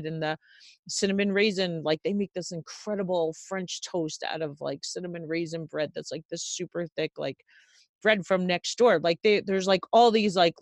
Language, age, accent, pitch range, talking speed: English, 30-49, American, 165-215 Hz, 190 wpm